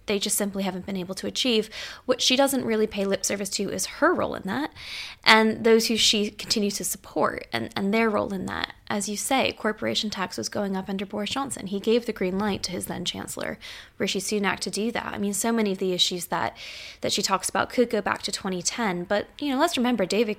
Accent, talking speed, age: American, 240 wpm, 10-29